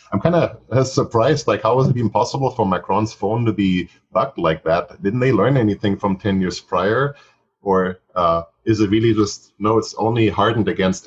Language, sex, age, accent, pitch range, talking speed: English, male, 30-49, German, 95-110 Hz, 200 wpm